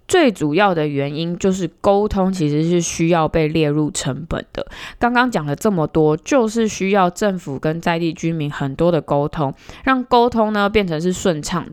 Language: Chinese